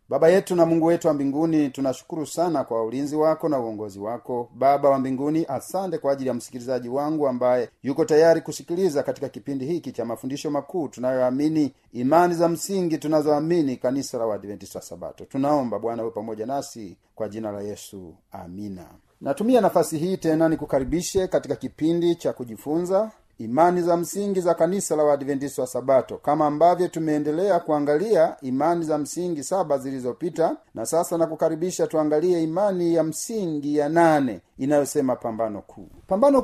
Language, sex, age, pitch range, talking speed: Swahili, male, 40-59, 130-170 Hz, 155 wpm